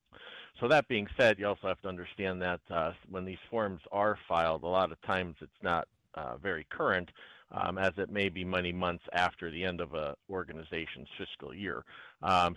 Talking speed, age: 195 wpm, 40-59